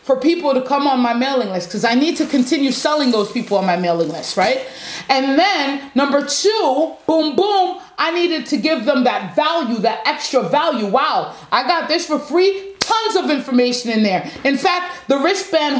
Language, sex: English, female